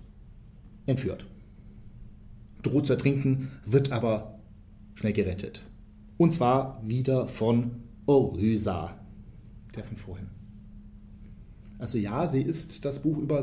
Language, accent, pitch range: German, German, 105-130 Hz